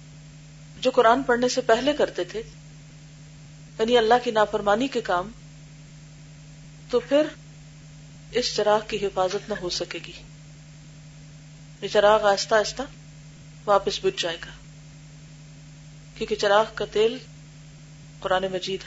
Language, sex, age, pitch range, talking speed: Urdu, female, 40-59, 150-230 Hz, 120 wpm